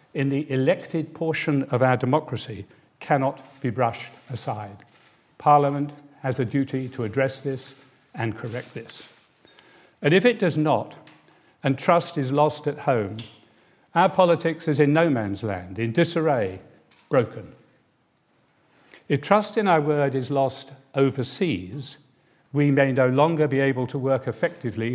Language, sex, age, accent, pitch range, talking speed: English, male, 50-69, British, 120-145 Hz, 140 wpm